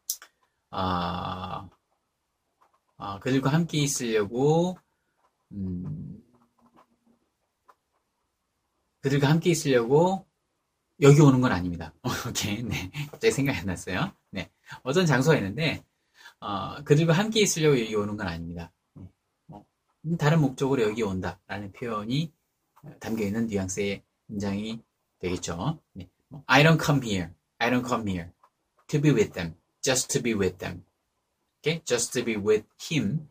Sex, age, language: male, 30-49, Korean